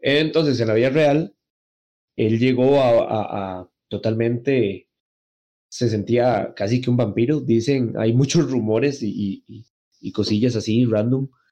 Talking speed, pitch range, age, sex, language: 140 wpm, 110-130 Hz, 20-39, male, Spanish